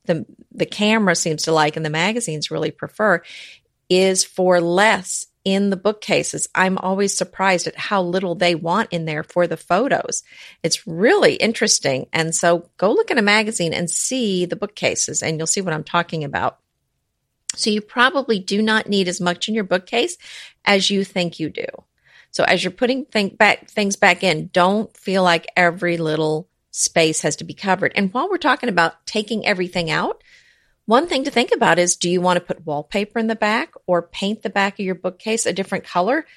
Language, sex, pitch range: English, female, 175-220 Hz